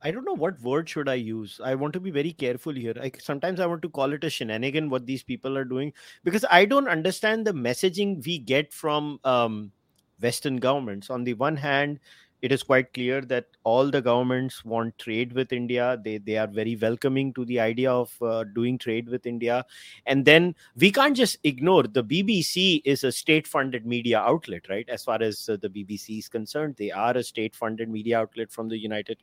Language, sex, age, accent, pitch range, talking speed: English, male, 30-49, Indian, 120-150 Hz, 210 wpm